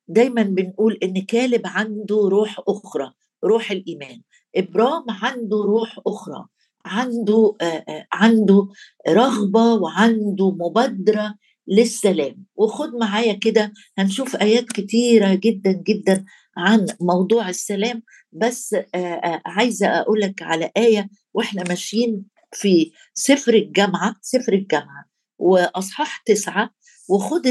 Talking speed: 100 wpm